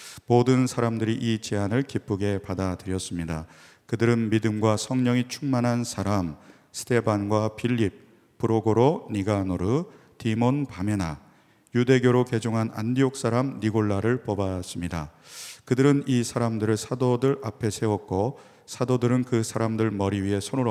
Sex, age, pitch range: male, 40-59, 100-125 Hz